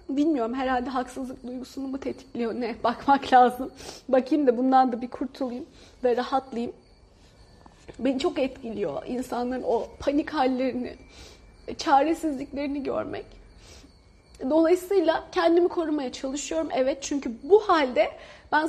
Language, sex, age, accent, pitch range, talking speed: Turkish, female, 30-49, native, 255-315 Hz, 110 wpm